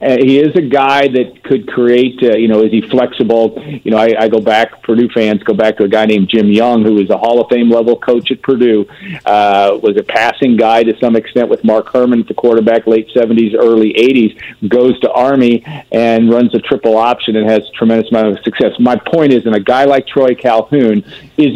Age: 50-69